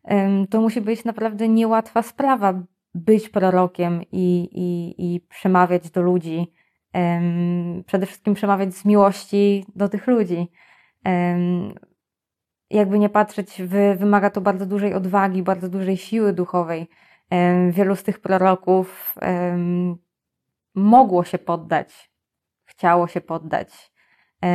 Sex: female